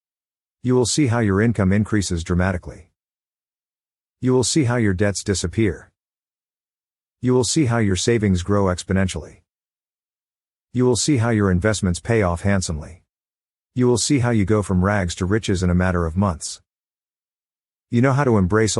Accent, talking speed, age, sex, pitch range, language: American, 165 wpm, 50-69, male, 90-115 Hz, English